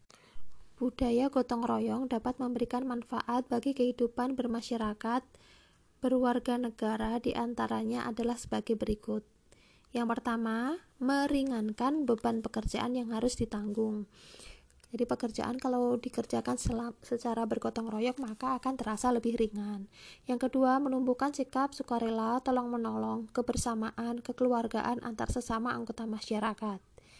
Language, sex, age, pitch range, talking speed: Indonesian, female, 20-39, 225-250 Hz, 110 wpm